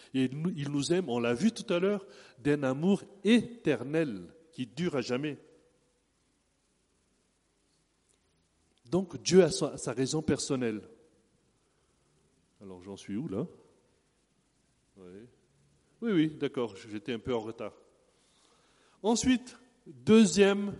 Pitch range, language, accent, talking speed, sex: 125-190 Hz, French, French, 110 wpm, male